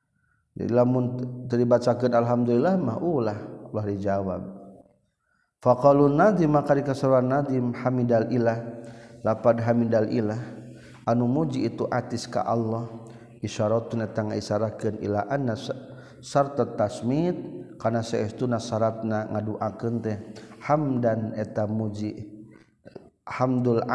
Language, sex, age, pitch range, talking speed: Indonesian, male, 40-59, 110-130 Hz, 105 wpm